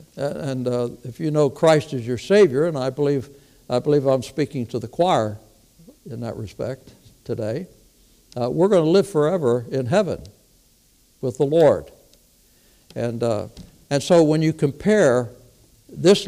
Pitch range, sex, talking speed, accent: 115-145 Hz, male, 155 wpm, American